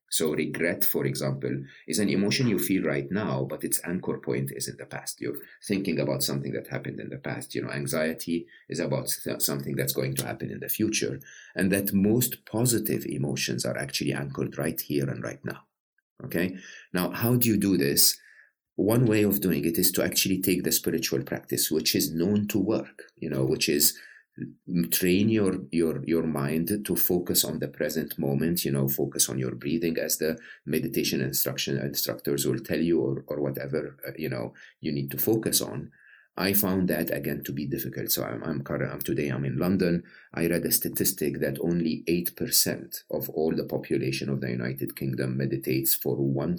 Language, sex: English, male